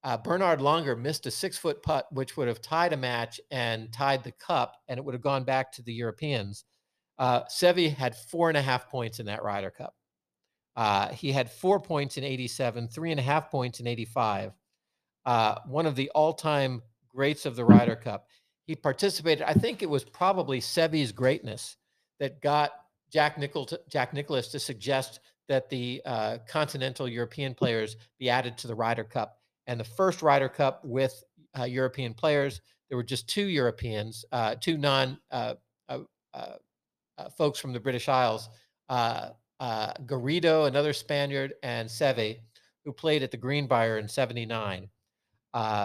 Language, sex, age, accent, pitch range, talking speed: English, male, 50-69, American, 120-150 Hz, 170 wpm